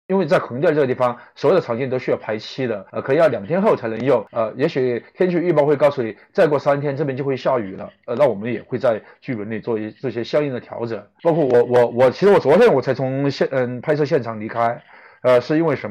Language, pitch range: Chinese, 115-150 Hz